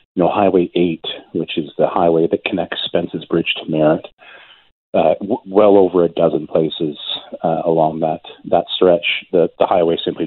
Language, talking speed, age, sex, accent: English, 180 wpm, 40-59, male, American